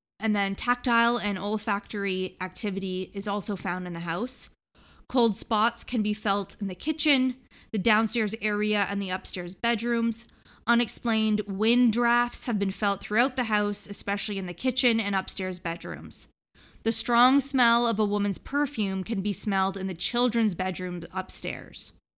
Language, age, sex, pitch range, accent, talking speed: English, 20-39, female, 195-235 Hz, American, 155 wpm